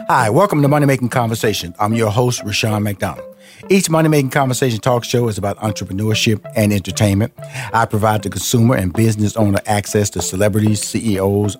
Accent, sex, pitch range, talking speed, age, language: American, male, 95-115 Hz, 160 wpm, 50-69, English